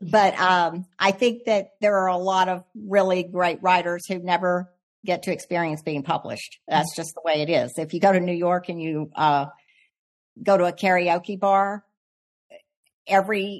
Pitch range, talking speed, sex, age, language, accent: 160-185 Hz, 180 wpm, female, 50-69, English, American